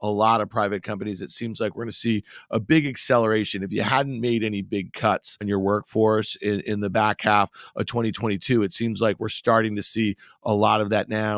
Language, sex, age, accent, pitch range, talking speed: English, male, 40-59, American, 110-125 Hz, 225 wpm